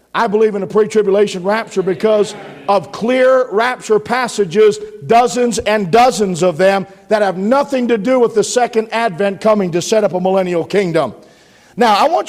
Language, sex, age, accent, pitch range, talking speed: English, male, 50-69, American, 180-225 Hz, 170 wpm